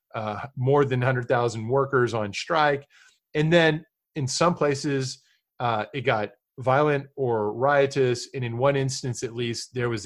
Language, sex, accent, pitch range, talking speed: English, male, American, 120-140 Hz, 155 wpm